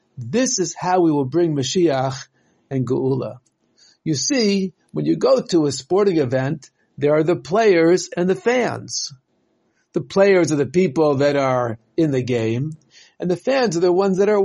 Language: English